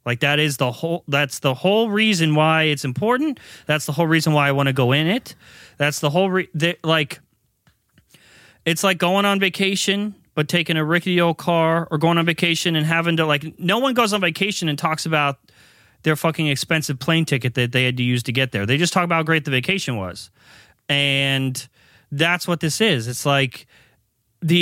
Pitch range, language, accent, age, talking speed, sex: 140-180 Hz, English, American, 30-49, 200 wpm, male